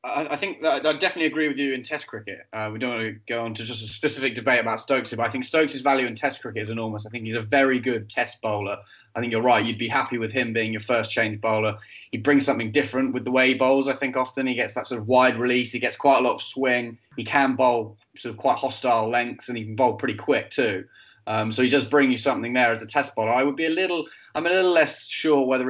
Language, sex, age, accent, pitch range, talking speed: English, male, 10-29, British, 115-140 Hz, 285 wpm